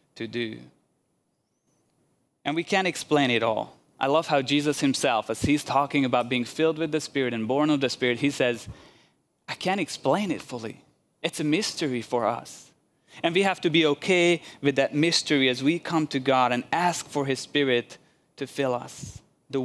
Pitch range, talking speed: 125-155 Hz, 190 wpm